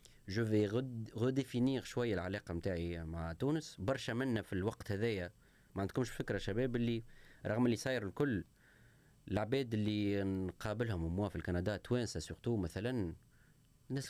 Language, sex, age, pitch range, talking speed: Arabic, male, 30-49, 100-130 Hz, 140 wpm